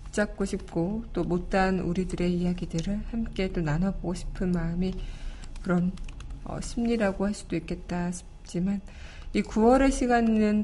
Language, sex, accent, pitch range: Korean, female, native, 170-210 Hz